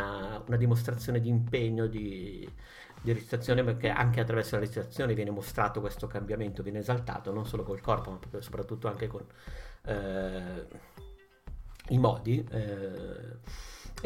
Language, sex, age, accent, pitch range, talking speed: Italian, male, 50-69, native, 105-120 Hz, 130 wpm